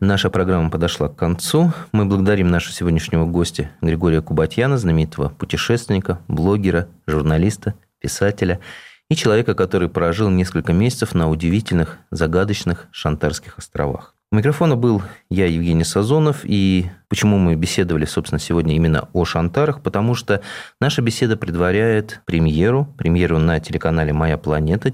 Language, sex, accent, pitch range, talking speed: Russian, male, native, 80-110 Hz, 130 wpm